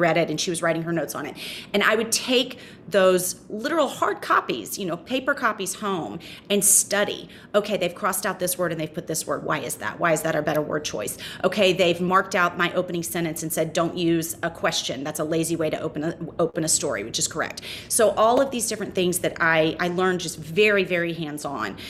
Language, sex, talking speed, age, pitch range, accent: English, female, 235 wpm, 30-49, 170-200 Hz, American